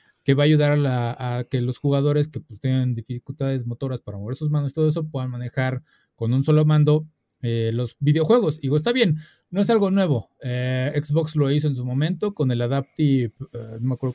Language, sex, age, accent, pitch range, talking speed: Spanish, male, 30-49, Mexican, 130-160 Hz, 225 wpm